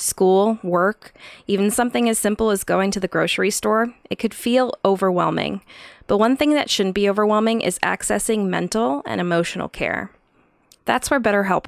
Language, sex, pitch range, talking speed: English, female, 185-230 Hz, 165 wpm